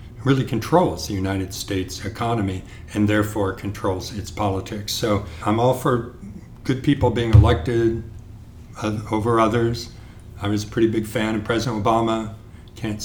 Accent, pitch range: American, 100-115 Hz